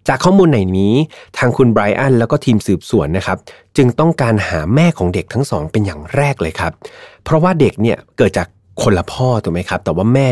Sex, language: male, Thai